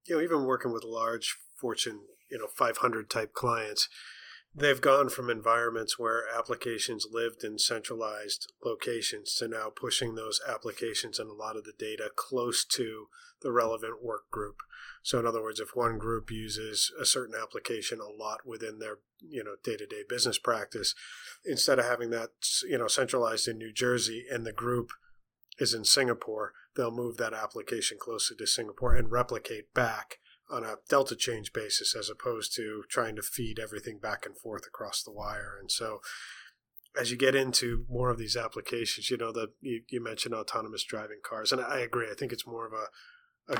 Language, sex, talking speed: English, male, 185 wpm